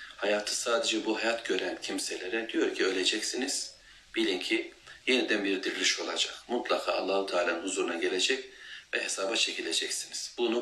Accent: native